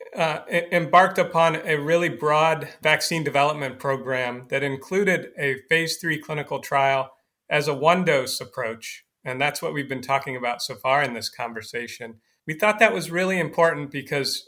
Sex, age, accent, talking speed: male, 40-59, American, 170 wpm